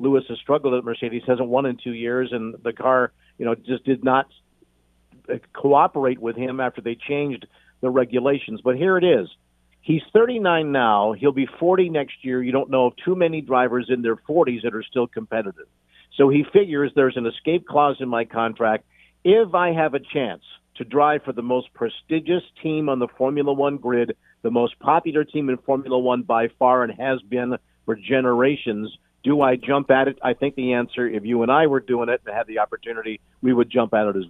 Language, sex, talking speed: English, male, 210 wpm